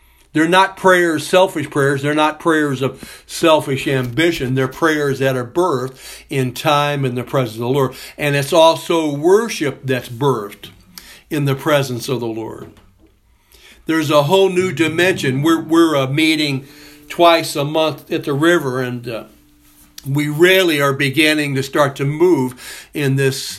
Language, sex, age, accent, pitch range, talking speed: English, male, 60-79, American, 135-155 Hz, 160 wpm